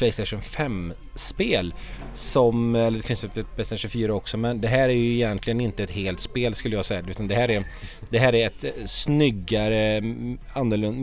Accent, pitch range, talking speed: Swedish, 110-135 Hz, 180 wpm